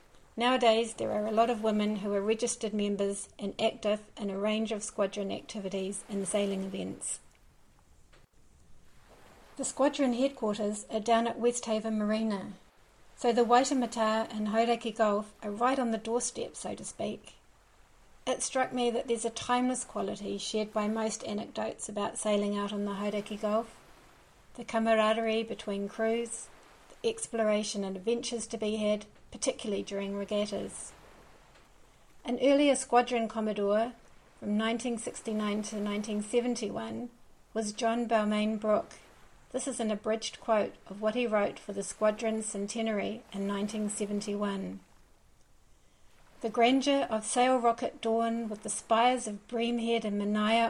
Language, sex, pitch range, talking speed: English, female, 210-235 Hz, 135 wpm